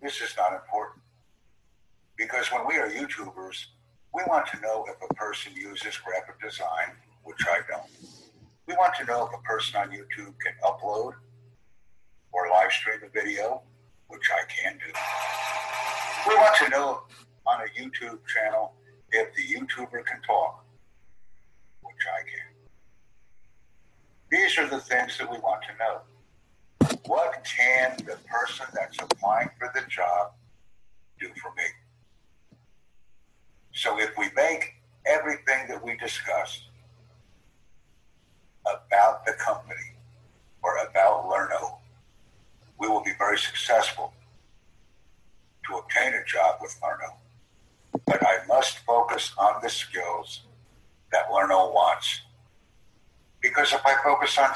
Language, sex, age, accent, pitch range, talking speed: English, male, 60-79, American, 95-125 Hz, 130 wpm